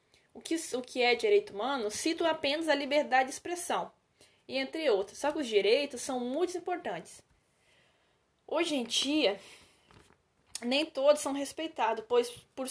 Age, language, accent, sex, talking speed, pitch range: 10-29, Portuguese, Brazilian, female, 140 wpm, 235-295 Hz